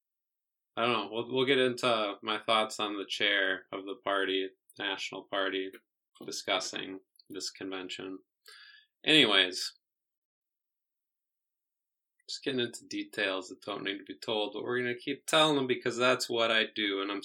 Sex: male